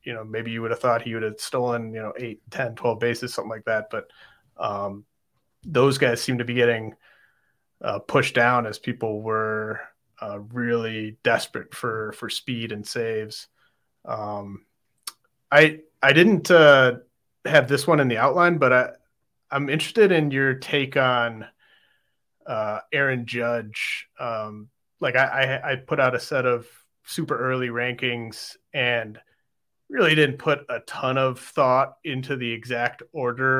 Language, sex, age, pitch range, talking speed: English, male, 30-49, 110-130 Hz, 160 wpm